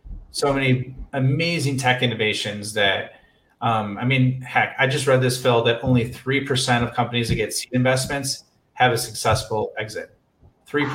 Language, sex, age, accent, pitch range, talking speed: English, male, 30-49, American, 115-140 Hz, 160 wpm